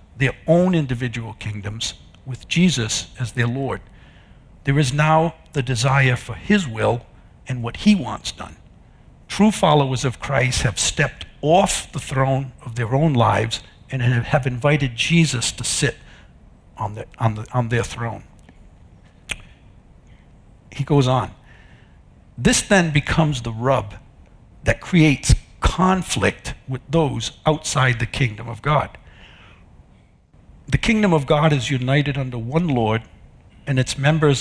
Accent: American